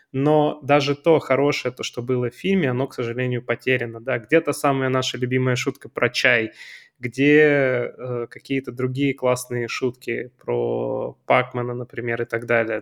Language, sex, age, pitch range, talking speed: Russian, male, 20-39, 120-140 Hz, 155 wpm